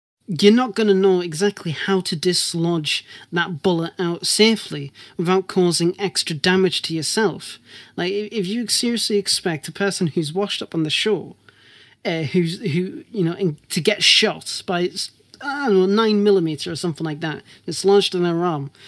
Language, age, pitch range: English, 30-49, 165-195 Hz